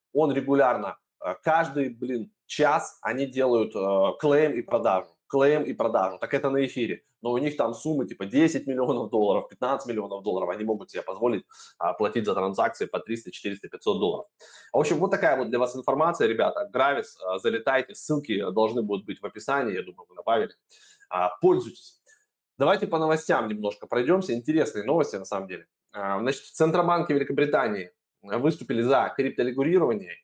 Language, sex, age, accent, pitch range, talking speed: Russian, male, 20-39, native, 120-180 Hz, 160 wpm